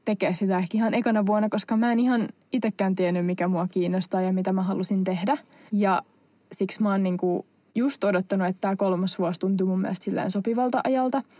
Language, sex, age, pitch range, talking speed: Finnish, female, 20-39, 195-230 Hz, 190 wpm